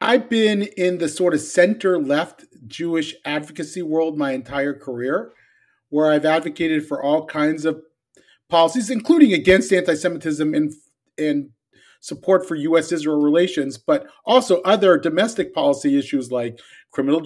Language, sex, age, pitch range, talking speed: English, male, 40-59, 150-195 Hz, 130 wpm